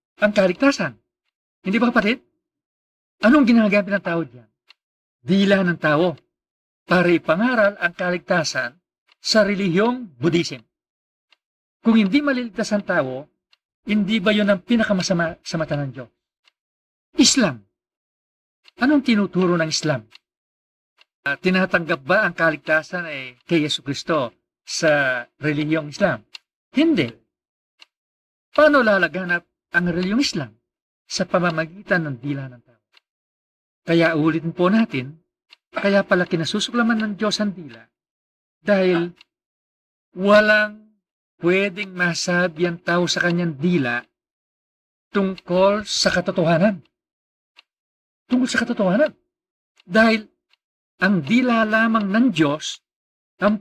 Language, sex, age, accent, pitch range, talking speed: English, male, 50-69, Filipino, 160-215 Hz, 105 wpm